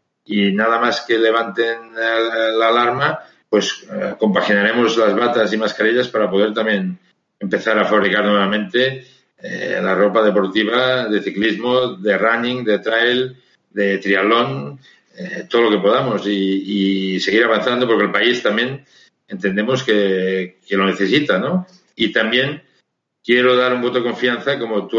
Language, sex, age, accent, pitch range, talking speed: Spanish, male, 60-79, Spanish, 100-120 Hz, 145 wpm